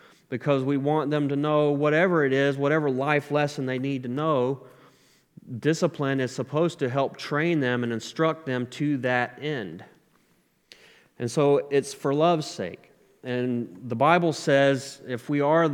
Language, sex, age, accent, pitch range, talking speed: English, male, 30-49, American, 115-145 Hz, 160 wpm